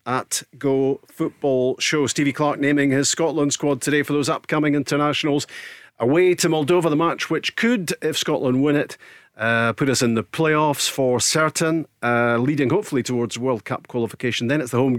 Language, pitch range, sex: English, 125-155 Hz, male